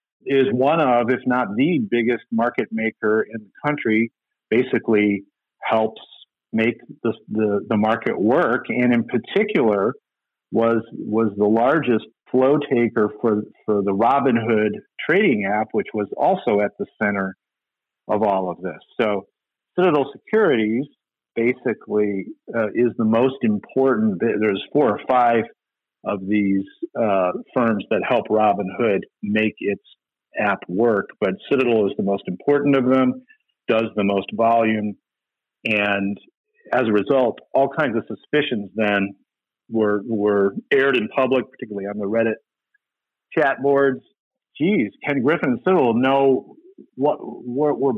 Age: 50-69